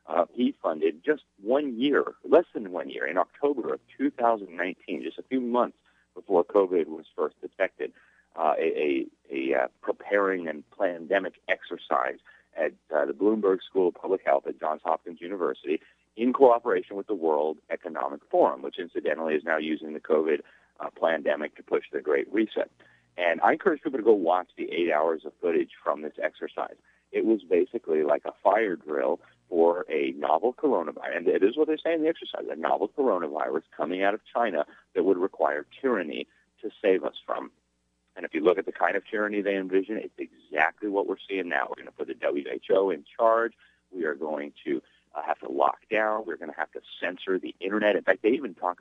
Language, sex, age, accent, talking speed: English, male, 40-59, American, 200 wpm